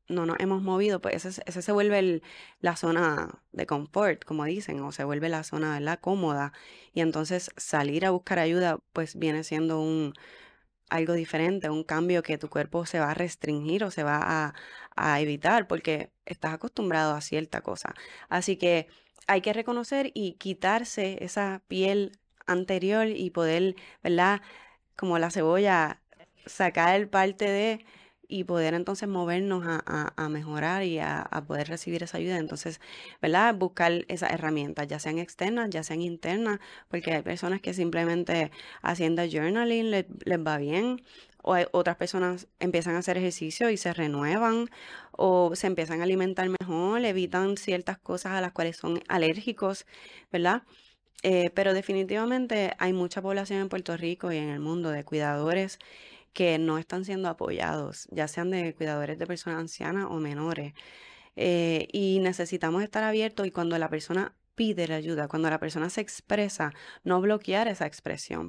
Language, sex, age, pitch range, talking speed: Spanish, female, 20-39, 160-195 Hz, 165 wpm